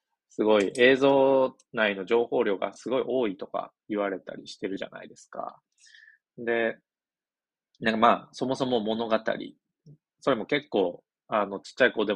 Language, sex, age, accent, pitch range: Japanese, male, 20-39, native, 105-145 Hz